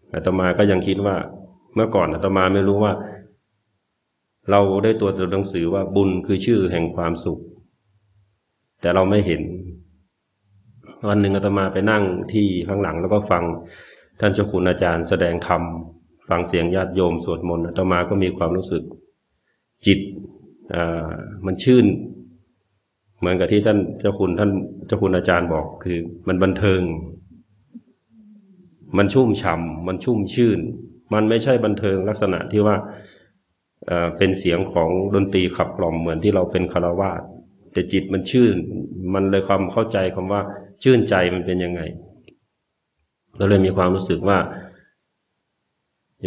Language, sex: Thai, male